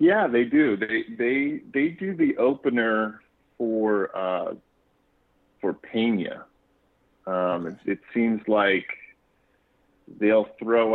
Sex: male